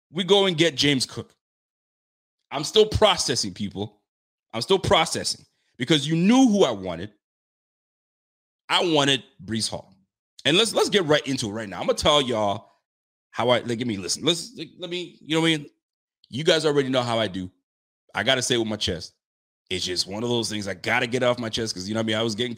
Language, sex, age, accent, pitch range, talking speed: English, male, 30-49, American, 105-160 Hz, 225 wpm